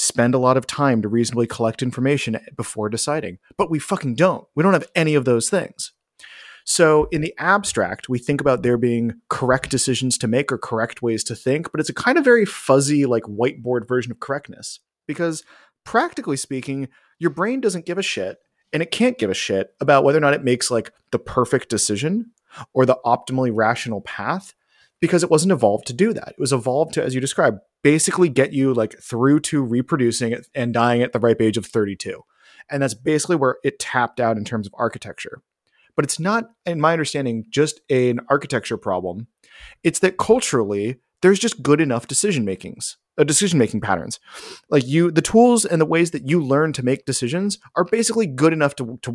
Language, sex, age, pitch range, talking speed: English, male, 30-49, 120-170 Hz, 195 wpm